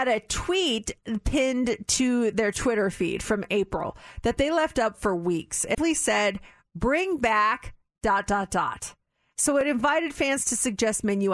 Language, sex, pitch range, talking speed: English, female, 205-280 Hz, 155 wpm